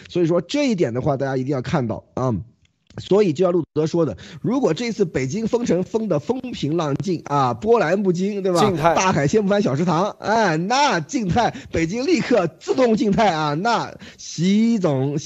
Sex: male